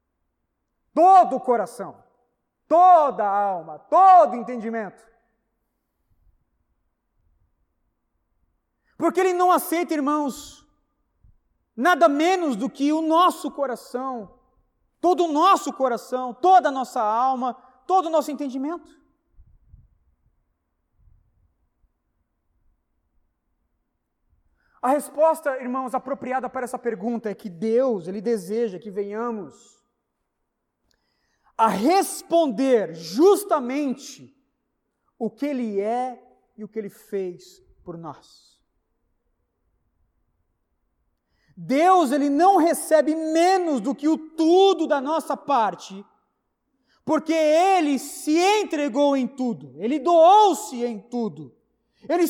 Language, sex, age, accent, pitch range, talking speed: Portuguese, male, 30-49, Brazilian, 200-315 Hz, 95 wpm